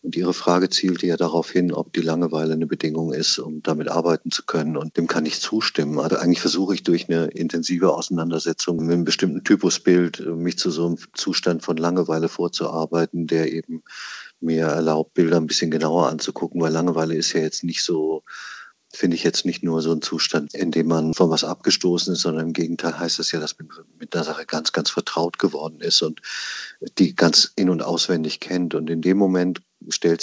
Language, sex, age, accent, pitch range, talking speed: German, male, 50-69, German, 80-90 Hz, 205 wpm